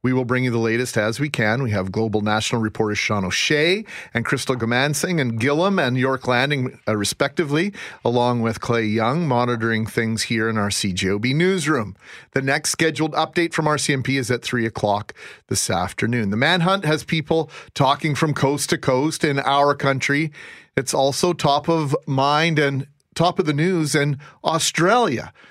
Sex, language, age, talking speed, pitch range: male, English, 40-59, 170 wpm, 120-150 Hz